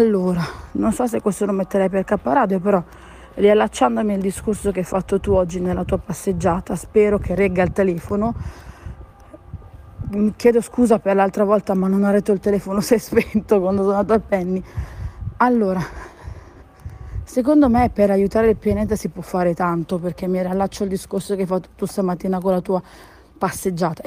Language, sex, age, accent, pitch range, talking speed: Italian, female, 40-59, native, 185-220 Hz, 175 wpm